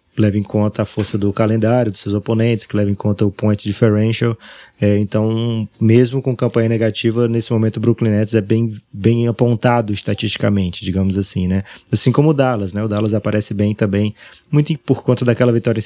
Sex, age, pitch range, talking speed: male, 20-39, 105-115 Hz, 195 wpm